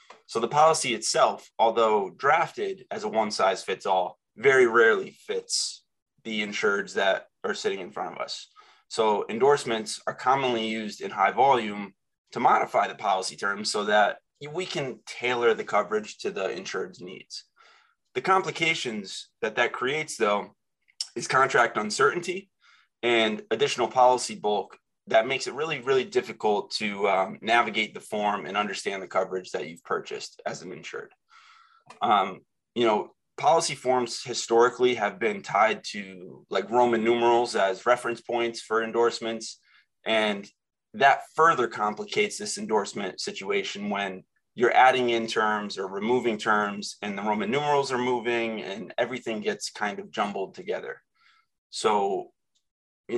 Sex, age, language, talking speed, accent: male, 20-39, English, 145 wpm, American